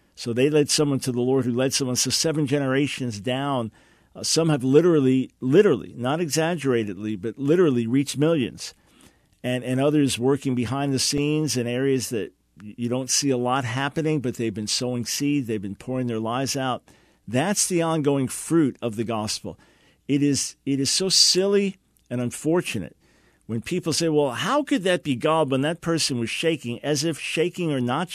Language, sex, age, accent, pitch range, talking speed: English, male, 50-69, American, 125-160 Hz, 185 wpm